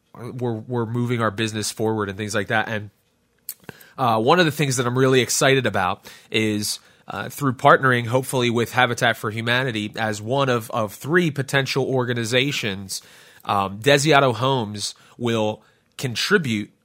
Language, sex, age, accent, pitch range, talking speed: English, male, 30-49, American, 110-130 Hz, 145 wpm